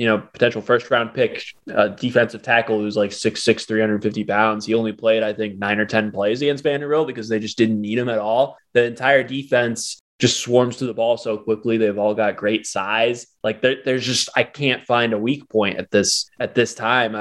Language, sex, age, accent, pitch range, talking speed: English, male, 20-39, American, 110-130 Hz, 225 wpm